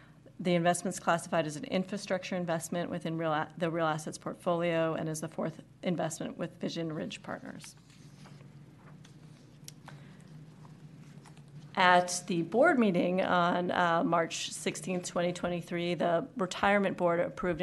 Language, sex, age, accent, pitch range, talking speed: English, female, 30-49, American, 160-185 Hz, 125 wpm